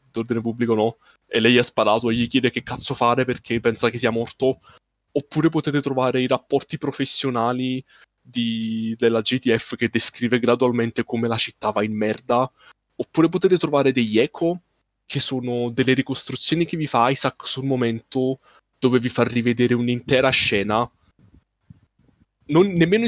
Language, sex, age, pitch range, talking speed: Italian, male, 20-39, 115-135 Hz, 150 wpm